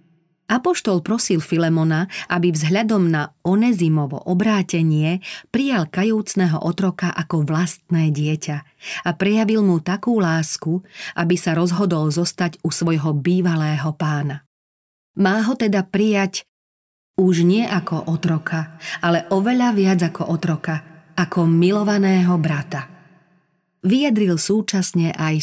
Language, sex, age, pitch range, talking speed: Slovak, female, 40-59, 160-190 Hz, 110 wpm